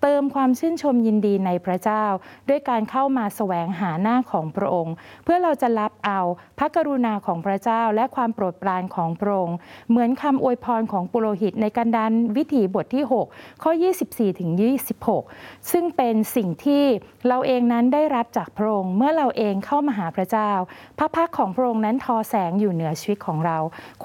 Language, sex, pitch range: Thai, female, 200-265 Hz